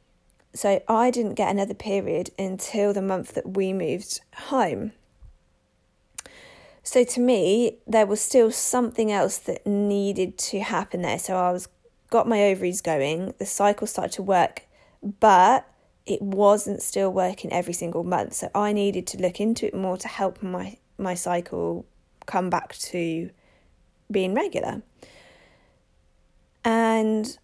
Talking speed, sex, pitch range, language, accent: 140 wpm, female, 180-220 Hz, English, British